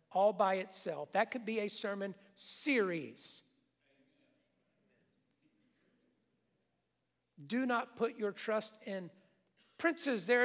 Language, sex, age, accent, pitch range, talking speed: English, male, 50-69, American, 195-270 Hz, 100 wpm